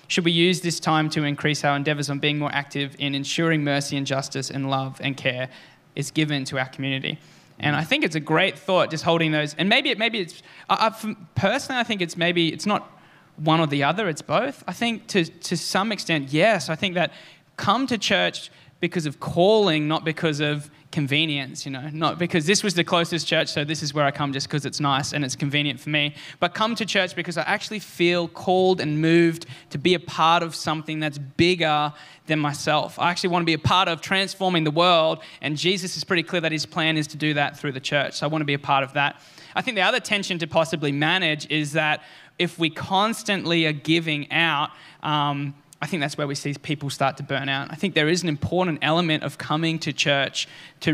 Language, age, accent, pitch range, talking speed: English, 10-29, Australian, 145-170 Hz, 230 wpm